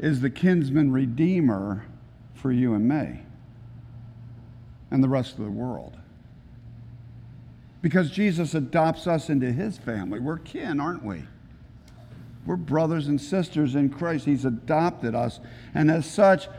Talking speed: 135 wpm